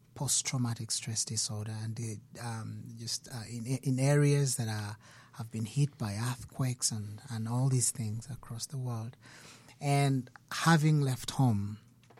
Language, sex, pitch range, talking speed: English, male, 115-140 Hz, 150 wpm